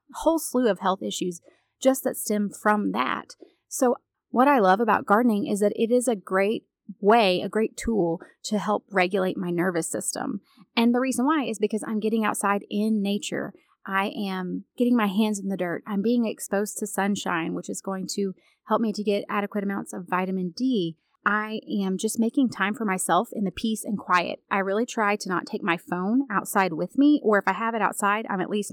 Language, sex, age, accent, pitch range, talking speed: English, female, 30-49, American, 195-235 Hz, 210 wpm